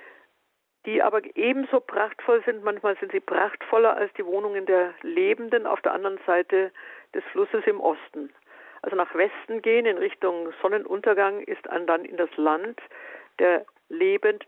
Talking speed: 155 wpm